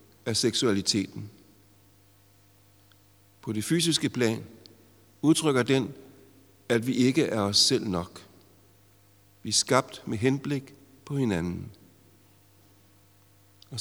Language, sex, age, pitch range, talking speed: Danish, male, 60-79, 100-135 Hz, 100 wpm